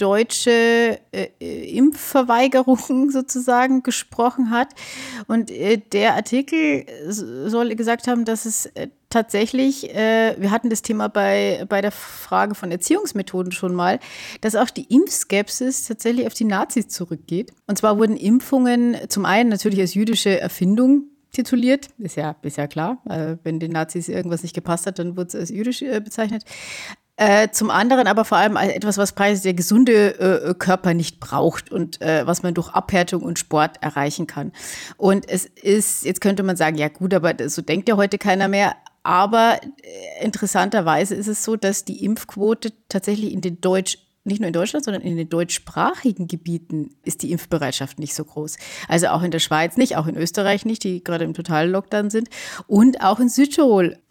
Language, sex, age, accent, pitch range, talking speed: German, female, 30-49, German, 180-235 Hz, 175 wpm